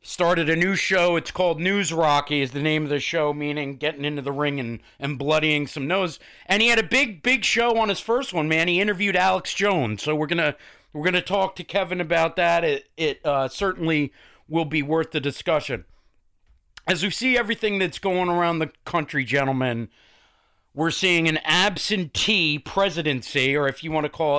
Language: English